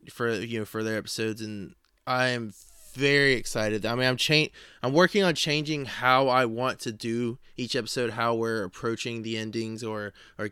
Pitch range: 110-125 Hz